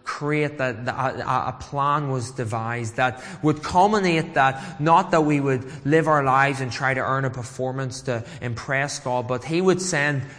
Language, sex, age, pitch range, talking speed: English, male, 20-39, 130-150 Hz, 175 wpm